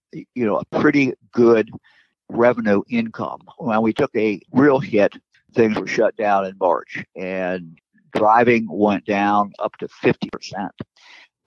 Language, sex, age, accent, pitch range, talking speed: English, male, 50-69, American, 100-120 Hz, 135 wpm